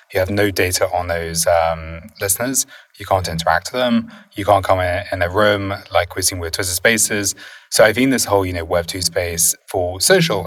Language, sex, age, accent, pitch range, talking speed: English, male, 20-39, British, 85-105 Hz, 210 wpm